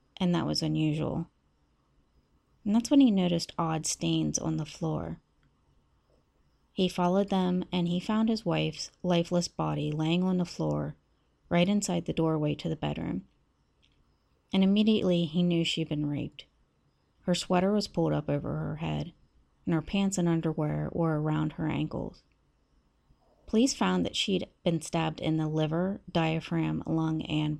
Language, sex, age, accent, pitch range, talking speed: English, female, 30-49, American, 150-185 Hz, 155 wpm